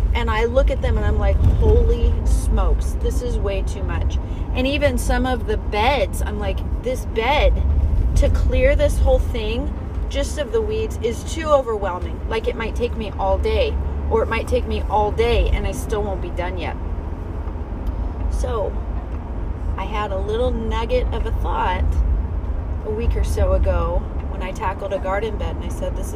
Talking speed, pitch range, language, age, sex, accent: 190 wpm, 75-85 Hz, English, 30-49, female, American